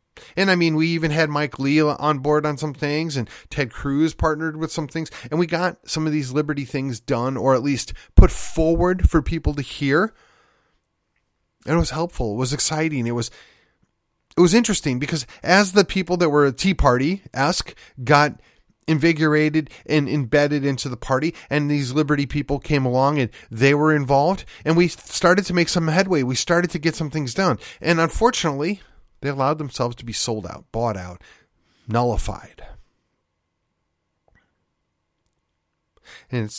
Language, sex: English, male